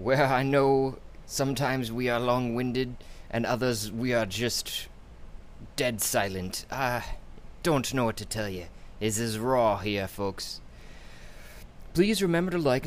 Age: 20-39